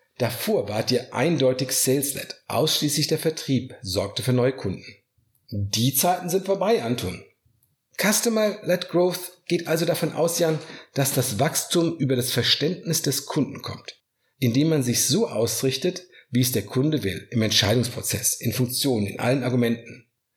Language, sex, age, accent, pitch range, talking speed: German, male, 50-69, German, 115-160 Hz, 155 wpm